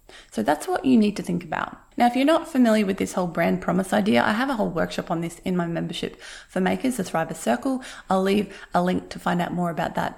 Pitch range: 180-250 Hz